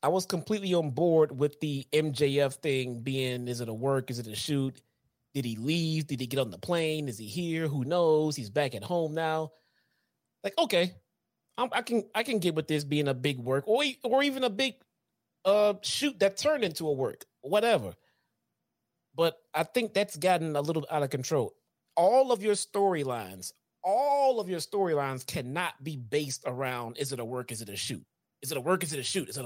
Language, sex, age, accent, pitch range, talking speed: English, male, 30-49, American, 135-185 Hz, 210 wpm